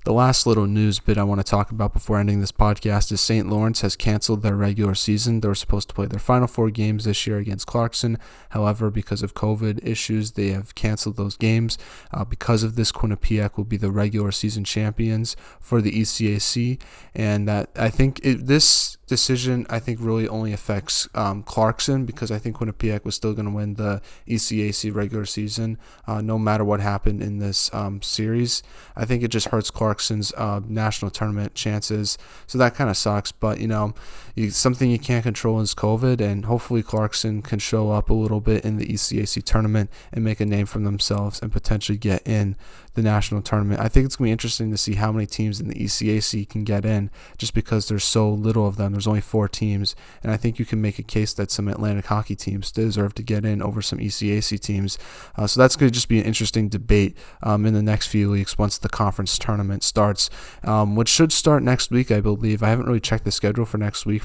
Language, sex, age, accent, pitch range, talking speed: English, male, 20-39, American, 105-110 Hz, 220 wpm